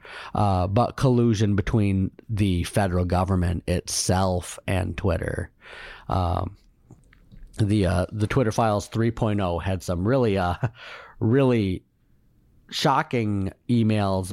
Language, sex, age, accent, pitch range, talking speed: English, male, 30-49, American, 95-115 Hz, 100 wpm